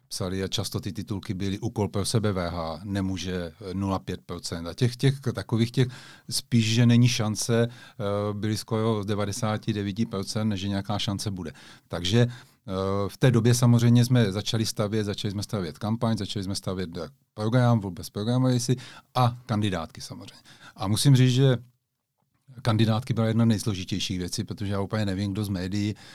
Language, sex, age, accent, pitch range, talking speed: Czech, male, 40-59, native, 100-120 Hz, 150 wpm